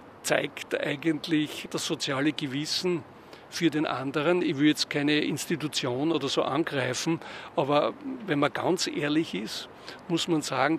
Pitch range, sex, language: 145-165 Hz, male, German